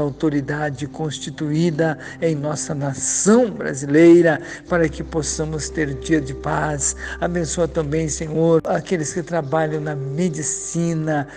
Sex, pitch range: male, 150-170 Hz